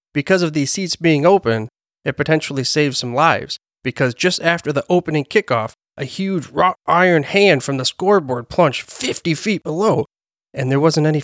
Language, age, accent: English, 30-49, American